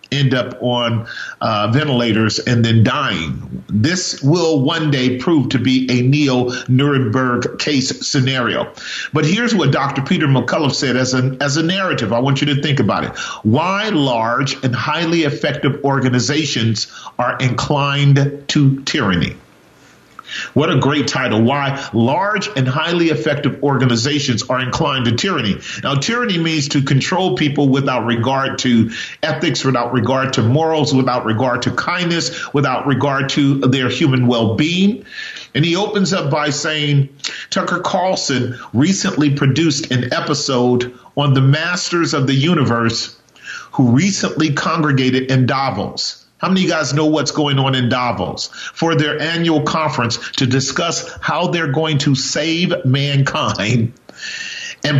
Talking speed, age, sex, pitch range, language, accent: 145 wpm, 40-59, male, 130-160 Hz, English, American